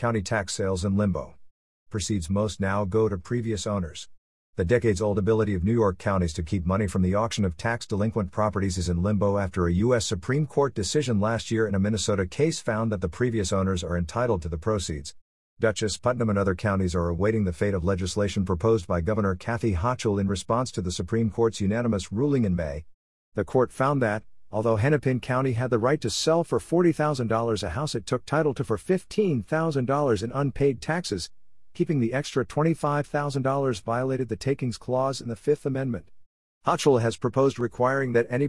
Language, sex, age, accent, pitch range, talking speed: English, male, 50-69, American, 100-135 Hz, 190 wpm